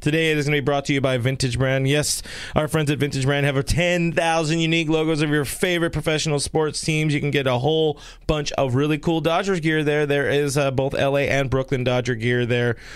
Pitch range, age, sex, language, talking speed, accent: 125-155 Hz, 20-39, male, English, 235 wpm, American